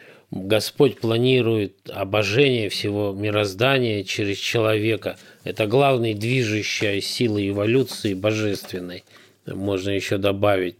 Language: Russian